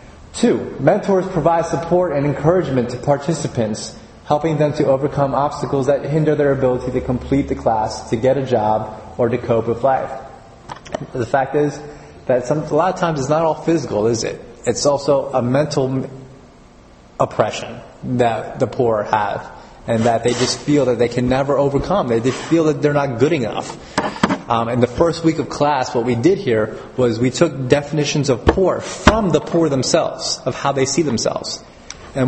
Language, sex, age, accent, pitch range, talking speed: English, male, 30-49, American, 120-150 Hz, 185 wpm